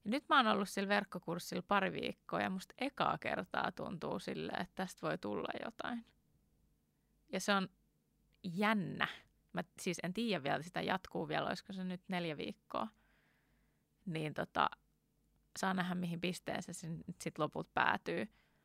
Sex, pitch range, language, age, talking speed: female, 150-190 Hz, Finnish, 20-39, 155 wpm